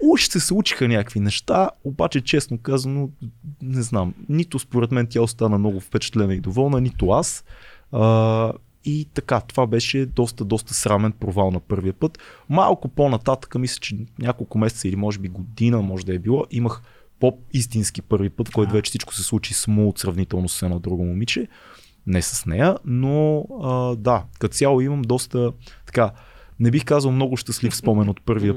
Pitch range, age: 110-135 Hz, 20-39